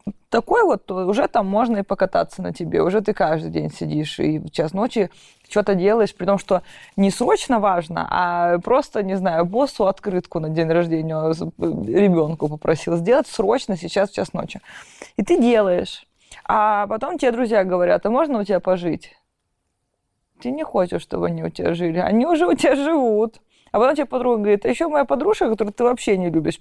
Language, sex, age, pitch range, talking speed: Russian, female, 20-39, 185-255 Hz, 185 wpm